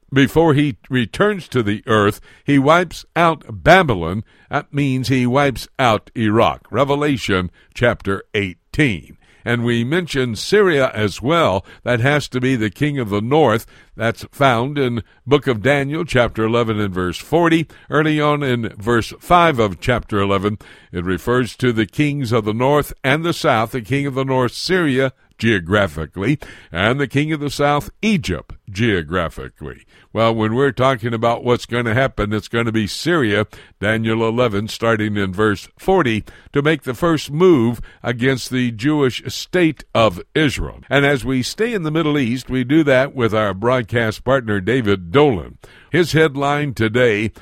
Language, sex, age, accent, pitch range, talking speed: English, male, 60-79, American, 110-145 Hz, 165 wpm